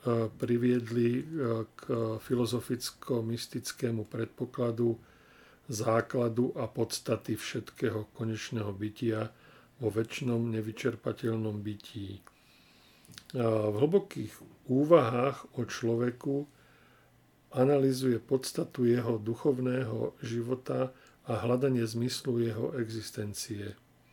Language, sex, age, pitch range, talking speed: Slovak, male, 50-69, 115-130 Hz, 70 wpm